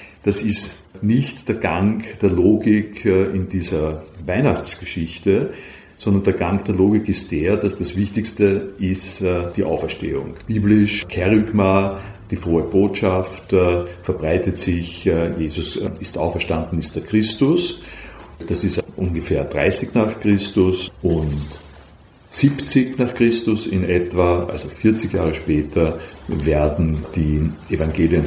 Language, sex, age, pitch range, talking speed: German, male, 50-69, 85-105 Hz, 115 wpm